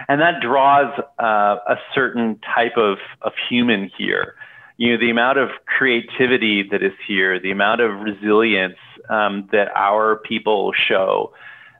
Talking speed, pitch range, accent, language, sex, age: 145 wpm, 100-125 Hz, American, English, male, 30-49